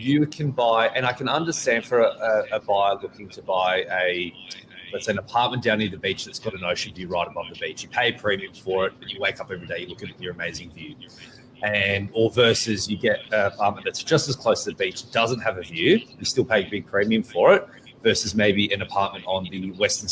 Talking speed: 250 wpm